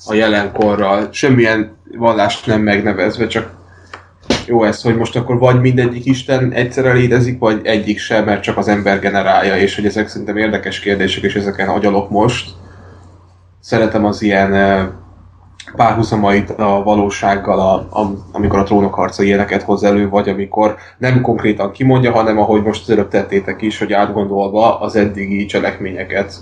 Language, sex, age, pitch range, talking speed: Hungarian, male, 10-29, 100-115 Hz, 145 wpm